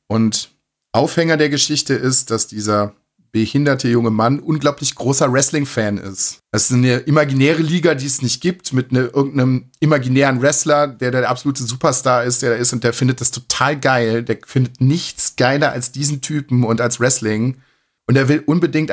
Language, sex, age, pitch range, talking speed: German, male, 40-59, 120-140 Hz, 180 wpm